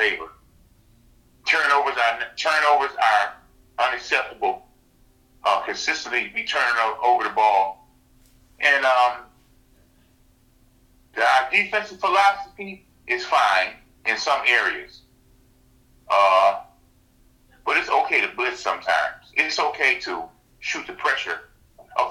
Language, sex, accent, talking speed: English, male, American, 105 wpm